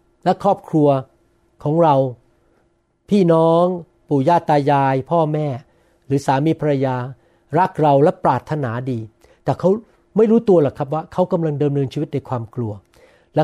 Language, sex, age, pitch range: Thai, male, 60-79, 150-205 Hz